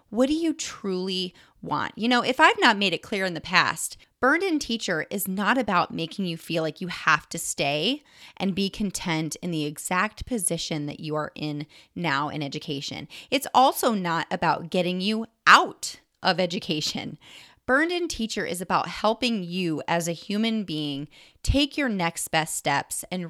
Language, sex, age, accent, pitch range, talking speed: English, female, 30-49, American, 170-230 Hz, 180 wpm